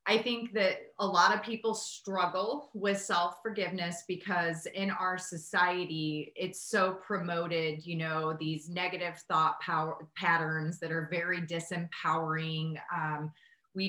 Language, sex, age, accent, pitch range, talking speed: English, female, 30-49, American, 170-215 Hz, 130 wpm